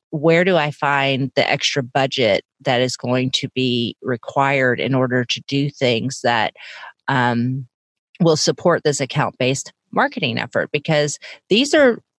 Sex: female